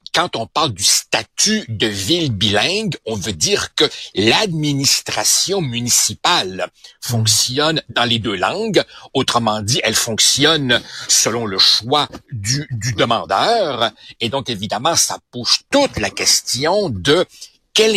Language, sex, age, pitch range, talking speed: French, male, 60-79, 115-160 Hz, 130 wpm